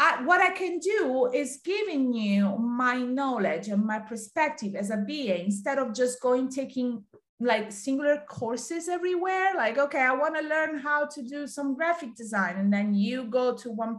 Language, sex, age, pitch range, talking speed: English, female, 30-49, 215-285 Hz, 180 wpm